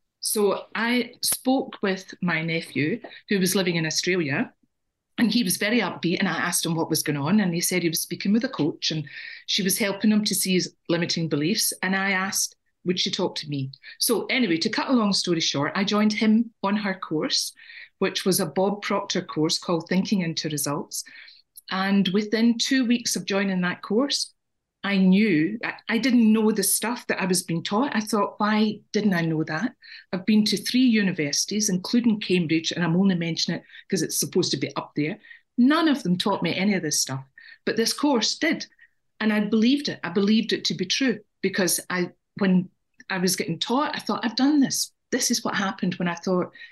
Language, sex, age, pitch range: English, female, 40-59, 175-225 Hz